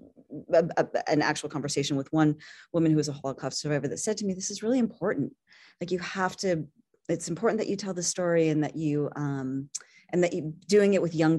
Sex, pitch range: female, 150-200 Hz